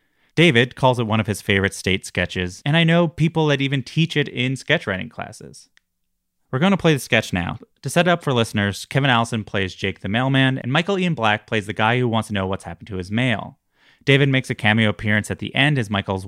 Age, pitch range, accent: 30-49, 105-145 Hz, American